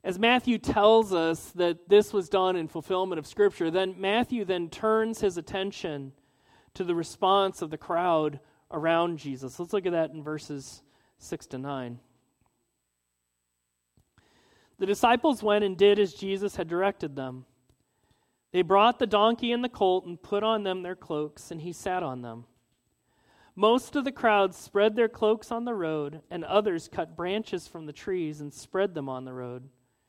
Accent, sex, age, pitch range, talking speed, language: American, male, 40-59, 140-205 Hz, 170 wpm, English